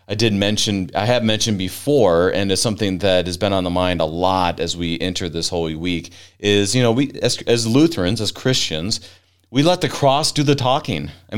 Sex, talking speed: male, 215 wpm